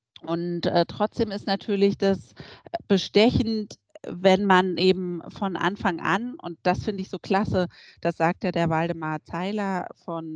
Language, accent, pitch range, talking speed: German, German, 170-205 Hz, 150 wpm